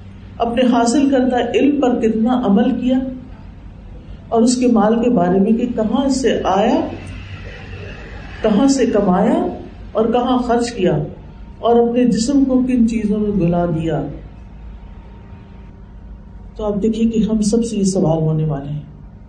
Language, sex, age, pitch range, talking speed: Urdu, female, 50-69, 160-230 Hz, 150 wpm